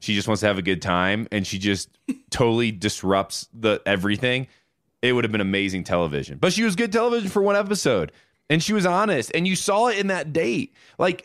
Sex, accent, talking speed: male, American, 220 wpm